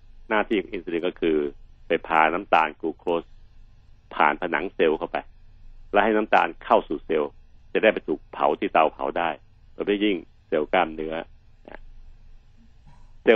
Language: Thai